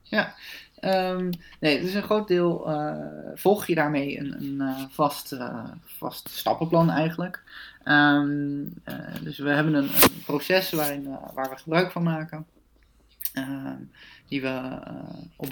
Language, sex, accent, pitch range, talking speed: Dutch, male, Dutch, 140-165 Hz, 140 wpm